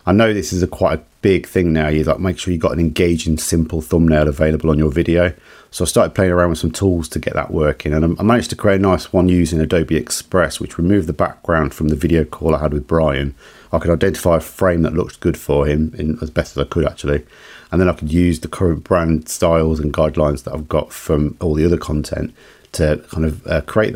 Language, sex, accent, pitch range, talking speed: English, male, British, 75-95 Hz, 255 wpm